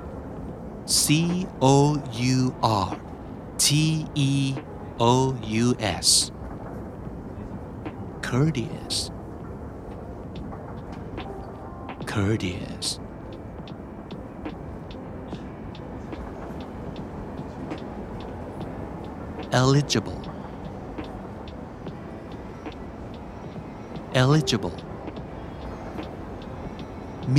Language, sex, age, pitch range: Thai, male, 60-79, 95-135 Hz